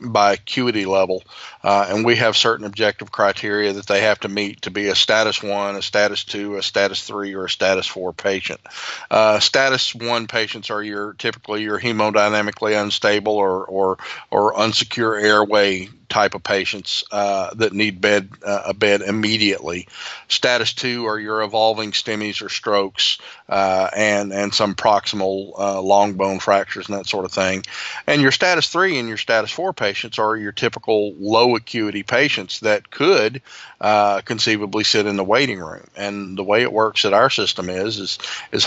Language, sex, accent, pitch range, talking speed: English, male, American, 100-115 Hz, 175 wpm